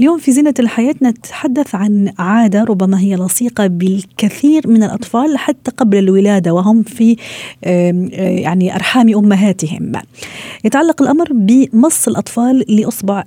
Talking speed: 115 wpm